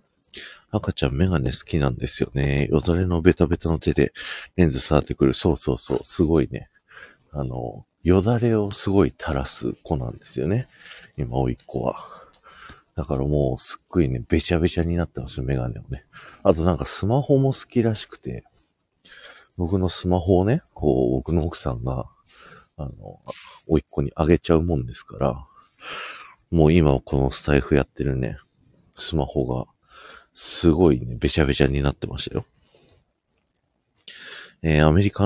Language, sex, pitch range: Japanese, male, 70-95 Hz